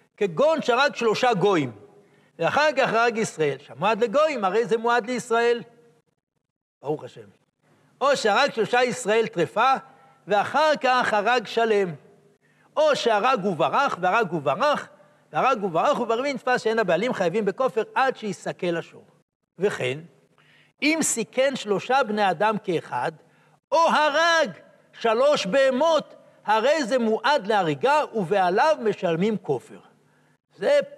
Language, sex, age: Hebrew, male, 60-79